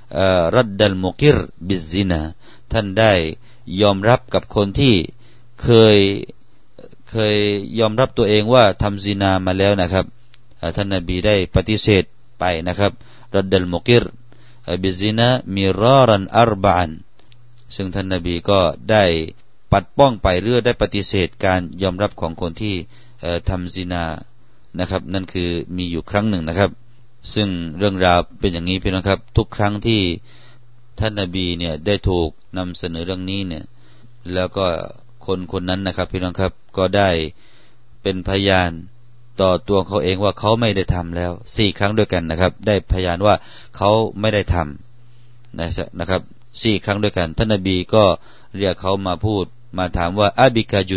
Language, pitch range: Thai, 90-110 Hz